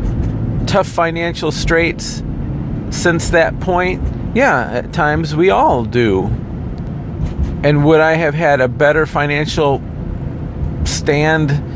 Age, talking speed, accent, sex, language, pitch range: 40-59, 105 wpm, American, male, English, 125-160 Hz